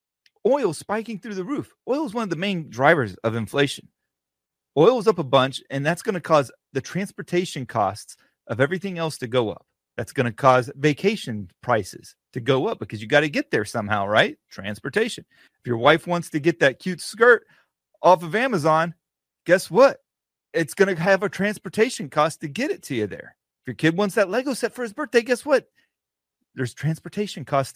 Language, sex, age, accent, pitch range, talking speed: English, male, 30-49, American, 125-190 Hz, 190 wpm